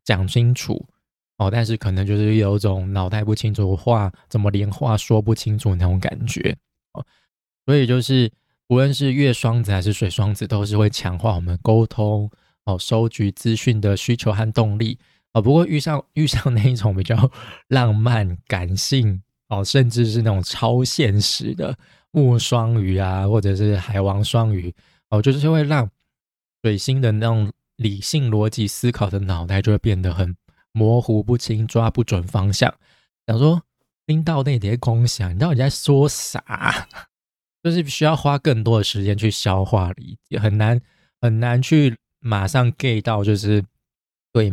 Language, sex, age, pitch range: Chinese, male, 20-39, 100-120 Hz